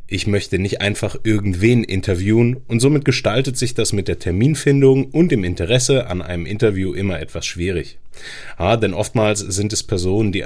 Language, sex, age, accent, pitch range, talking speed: German, male, 30-49, German, 90-125 Hz, 170 wpm